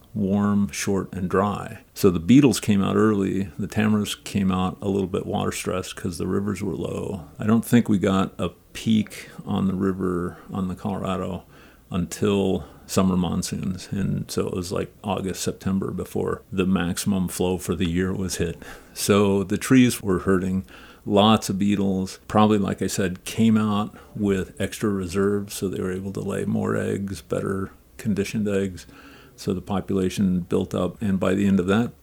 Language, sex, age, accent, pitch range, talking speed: English, male, 50-69, American, 95-100 Hz, 175 wpm